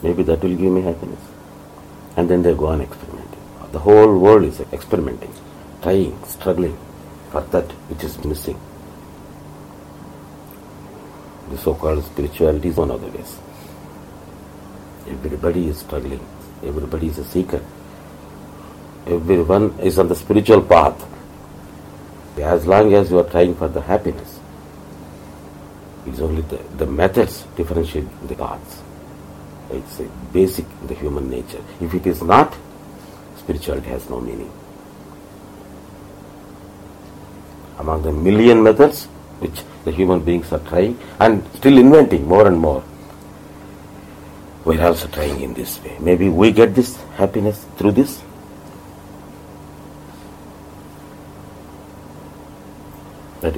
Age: 60-79